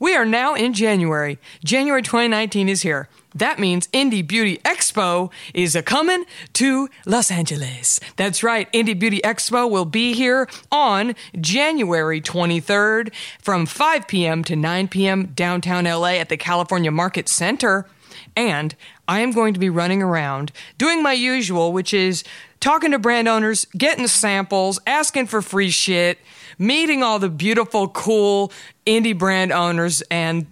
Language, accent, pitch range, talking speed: English, American, 170-225 Hz, 145 wpm